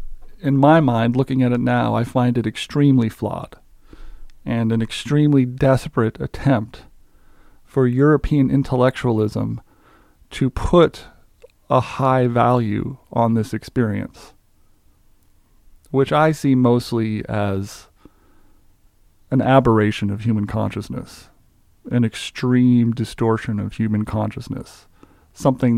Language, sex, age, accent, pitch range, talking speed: English, male, 40-59, American, 110-130 Hz, 105 wpm